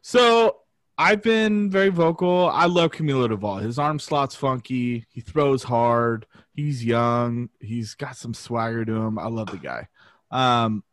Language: English